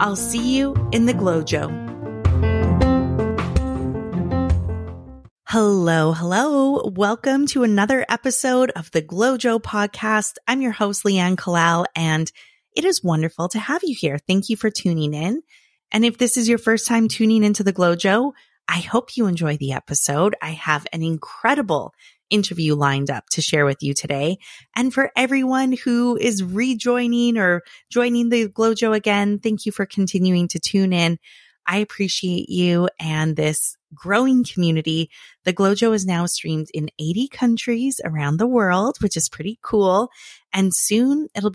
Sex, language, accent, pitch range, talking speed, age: female, English, American, 160-235 Hz, 155 wpm, 30-49